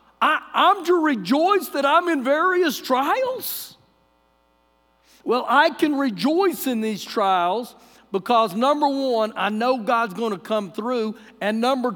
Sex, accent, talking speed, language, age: male, American, 140 wpm, English, 50-69